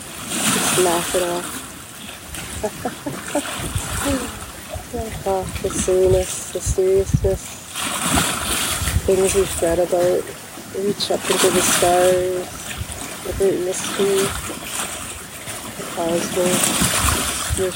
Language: English